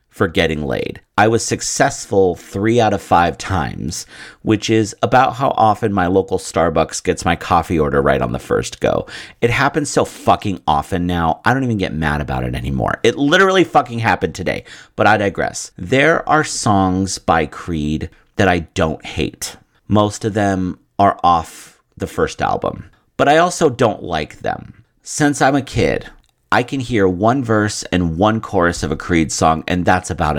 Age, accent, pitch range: 40-59, American, 85-115 Hz